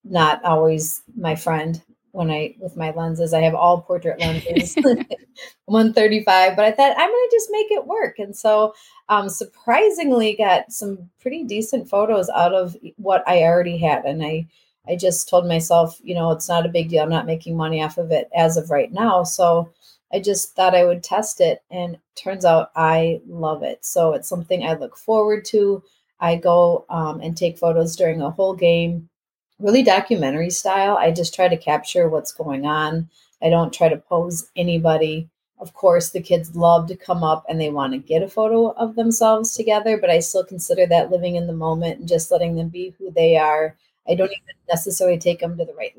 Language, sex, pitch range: English, female, 165-200 Hz